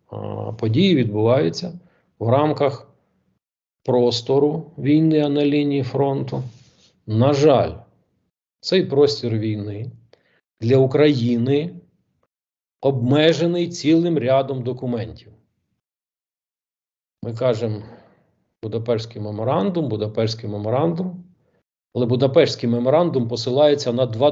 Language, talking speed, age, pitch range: Ukrainian, 80 wpm, 40-59, 110-135 Hz